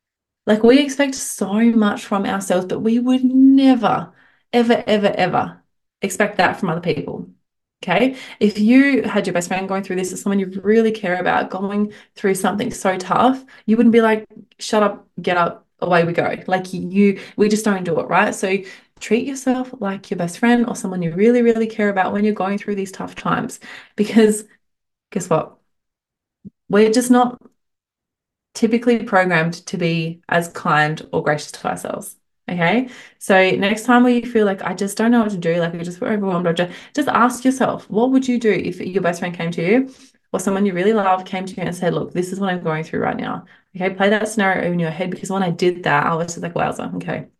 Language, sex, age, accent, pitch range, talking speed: English, female, 20-39, Australian, 185-230 Hz, 210 wpm